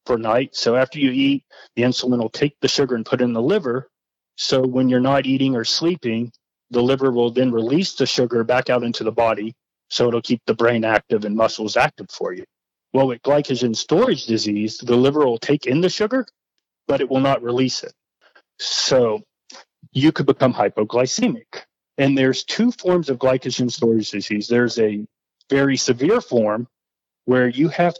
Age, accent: 30-49, American